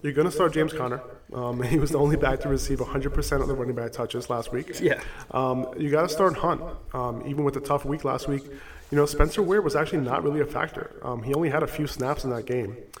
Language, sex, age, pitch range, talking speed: English, male, 20-39, 130-155 Hz, 265 wpm